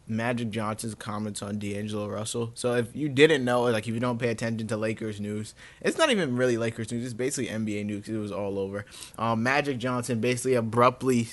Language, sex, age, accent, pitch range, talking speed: English, male, 20-39, American, 115-135 Hz, 205 wpm